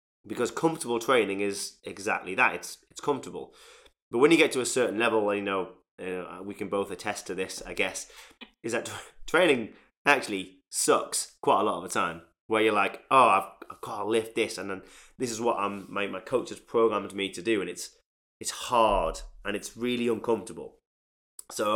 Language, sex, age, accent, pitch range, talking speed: English, male, 20-39, British, 95-120 Hz, 200 wpm